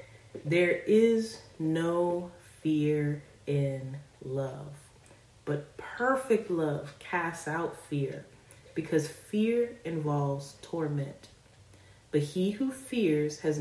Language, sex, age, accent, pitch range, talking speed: English, female, 30-49, American, 135-175 Hz, 95 wpm